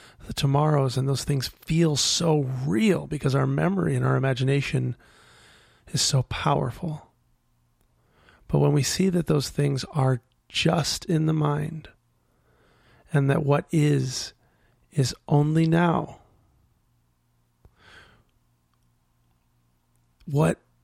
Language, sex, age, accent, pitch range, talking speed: English, male, 40-59, American, 130-160 Hz, 105 wpm